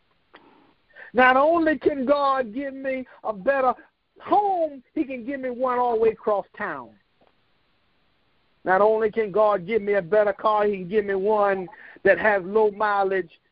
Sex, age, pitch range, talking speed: male, 50-69, 200-270 Hz, 165 wpm